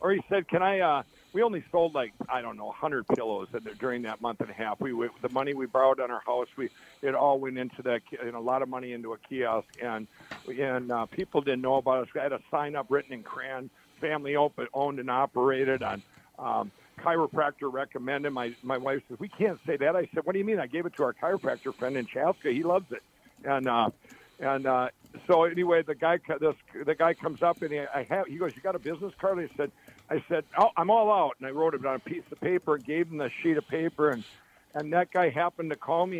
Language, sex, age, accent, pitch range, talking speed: English, male, 60-79, American, 130-170 Hz, 250 wpm